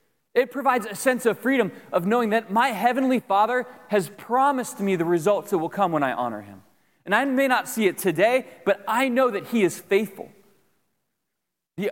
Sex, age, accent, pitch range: male, 30-49, American, 190-245 Hz